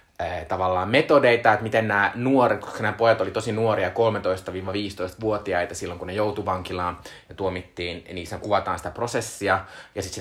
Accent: native